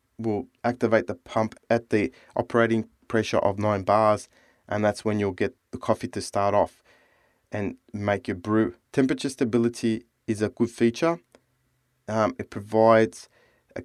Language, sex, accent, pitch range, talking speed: English, male, Australian, 110-125 Hz, 150 wpm